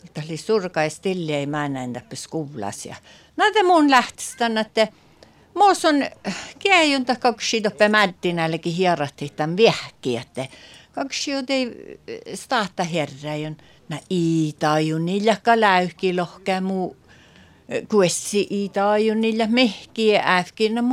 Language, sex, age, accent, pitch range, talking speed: Czech, female, 60-79, Swedish, 165-240 Hz, 125 wpm